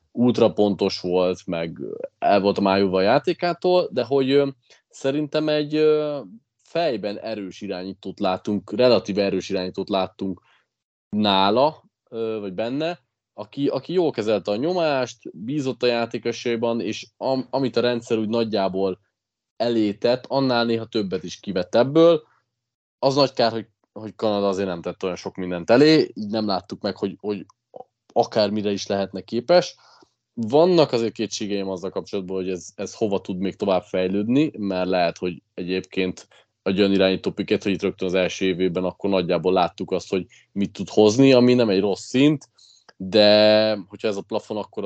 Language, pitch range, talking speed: Hungarian, 95-120 Hz, 155 wpm